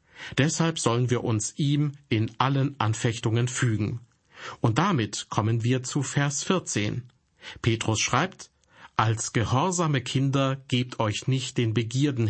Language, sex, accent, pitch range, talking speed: German, male, German, 110-135 Hz, 125 wpm